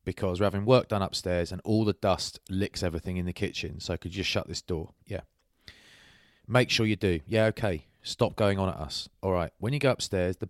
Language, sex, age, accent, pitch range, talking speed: English, male, 30-49, British, 95-110 Hz, 235 wpm